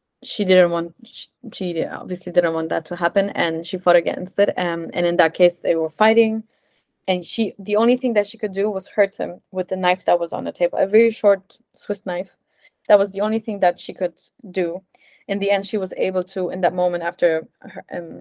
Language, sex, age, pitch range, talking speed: English, female, 20-39, 180-205 Hz, 235 wpm